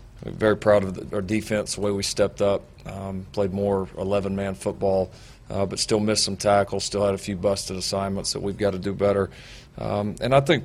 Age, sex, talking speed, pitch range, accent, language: 40-59, male, 220 wpm, 95-110 Hz, American, English